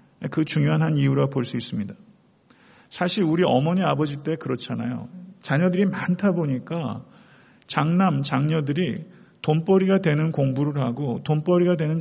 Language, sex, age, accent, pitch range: Korean, male, 40-59, native, 140-190 Hz